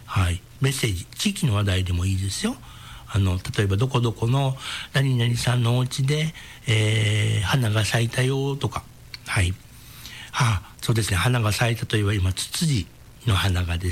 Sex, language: male, Japanese